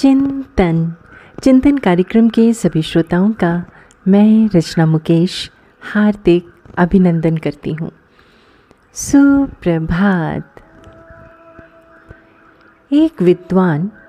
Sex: female